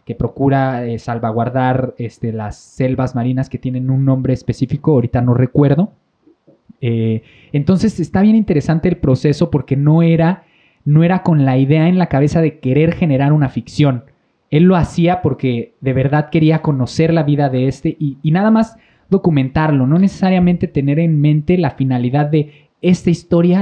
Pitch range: 135-170 Hz